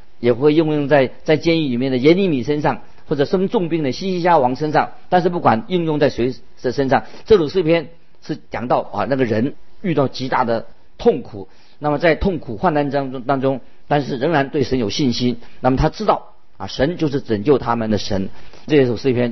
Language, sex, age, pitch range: Chinese, male, 50-69, 120-160 Hz